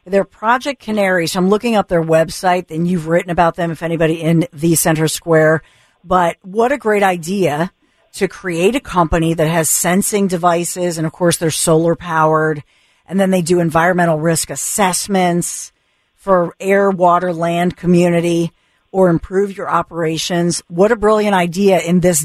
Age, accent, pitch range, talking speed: 50-69, American, 170-195 Hz, 160 wpm